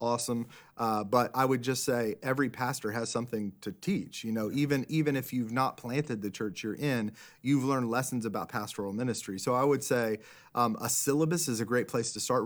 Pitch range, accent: 110-135 Hz, American